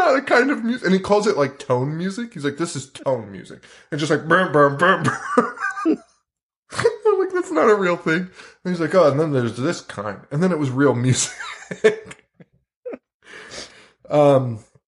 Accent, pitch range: American, 105-150 Hz